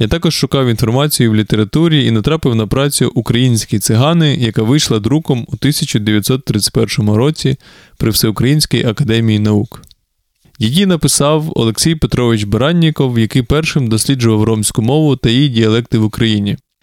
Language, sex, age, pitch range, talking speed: Ukrainian, male, 20-39, 110-140 Hz, 130 wpm